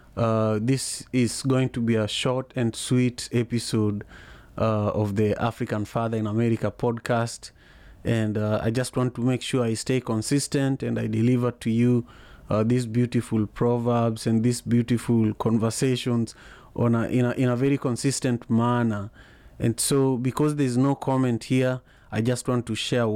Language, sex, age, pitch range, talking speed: English, male, 30-49, 110-125 Hz, 160 wpm